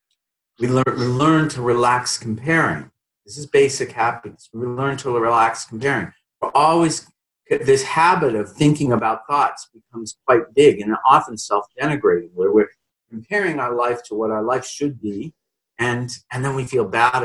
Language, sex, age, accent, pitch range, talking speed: English, male, 50-69, American, 115-160 Hz, 160 wpm